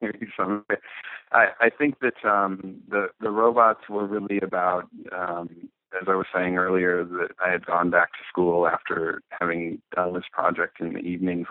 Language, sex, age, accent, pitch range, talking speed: English, male, 40-59, American, 85-90 Hz, 160 wpm